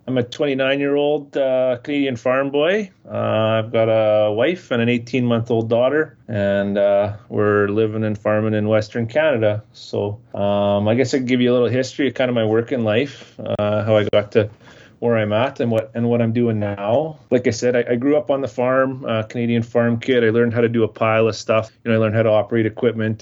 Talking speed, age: 225 wpm, 30-49